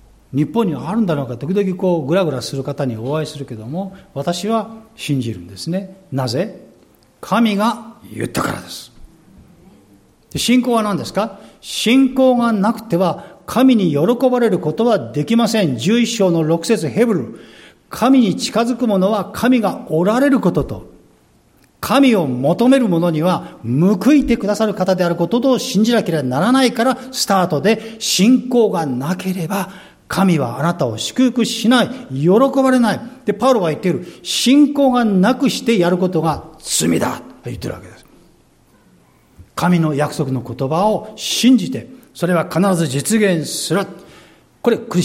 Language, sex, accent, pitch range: Japanese, male, native, 140-225 Hz